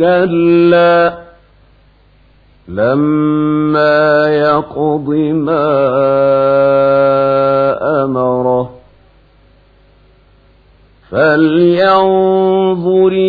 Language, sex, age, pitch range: Arabic, male, 50-69, 160-190 Hz